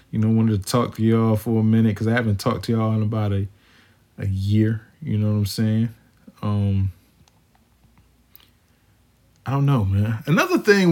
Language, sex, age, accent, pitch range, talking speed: English, male, 20-39, American, 110-140 Hz, 180 wpm